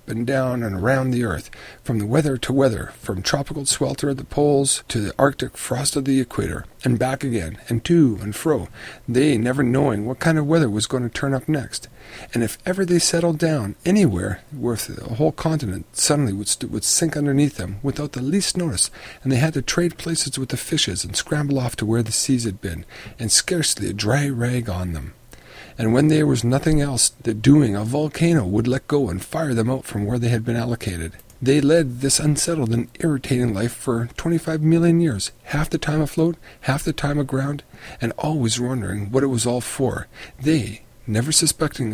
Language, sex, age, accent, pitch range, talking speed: English, male, 50-69, American, 115-150 Hz, 205 wpm